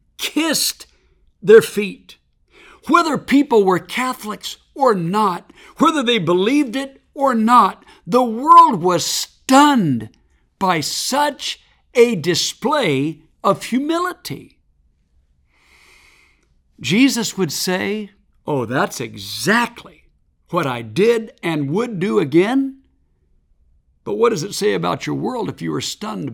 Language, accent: English, American